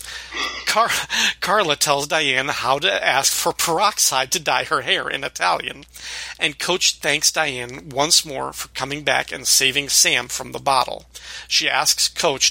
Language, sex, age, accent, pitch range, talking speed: English, male, 40-59, American, 130-160 Hz, 155 wpm